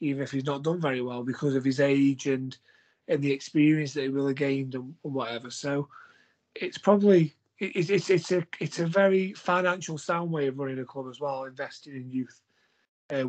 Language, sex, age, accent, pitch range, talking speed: English, male, 30-49, British, 135-170 Hz, 215 wpm